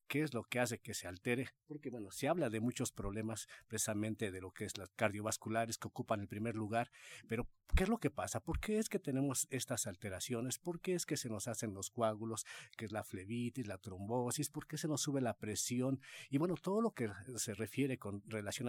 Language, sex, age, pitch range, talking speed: Spanish, male, 50-69, 110-135 Hz, 230 wpm